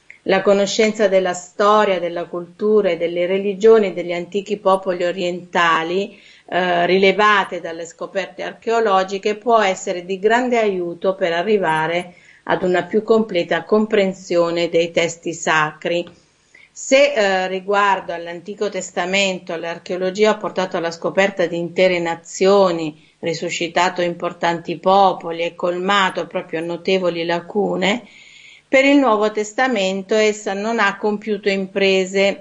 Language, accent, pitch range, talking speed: Italian, native, 175-200 Hz, 115 wpm